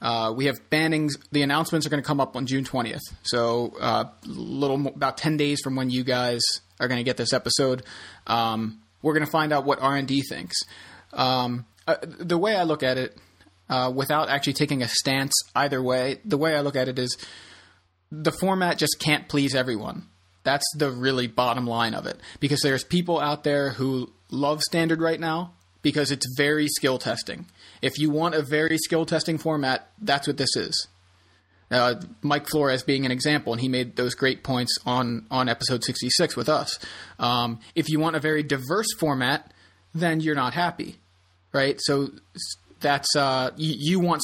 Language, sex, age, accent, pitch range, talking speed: English, male, 30-49, American, 125-150 Hz, 185 wpm